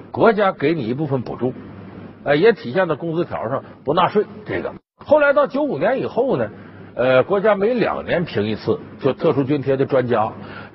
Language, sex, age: Chinese, male, 50-69